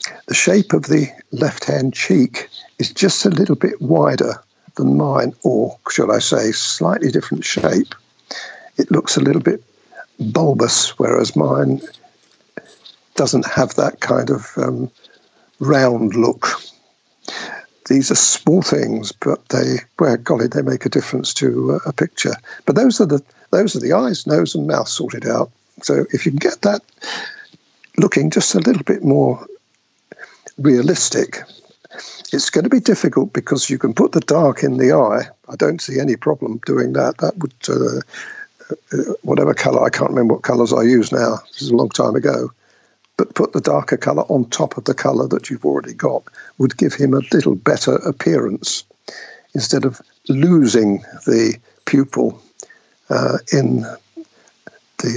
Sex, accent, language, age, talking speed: male, British, English, 60-79, 160 wpm